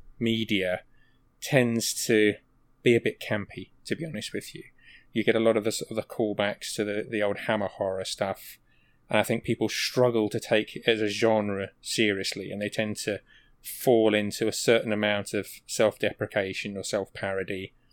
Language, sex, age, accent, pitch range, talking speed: English, male, 20-39, British, 100-115 Hz, 175 wpm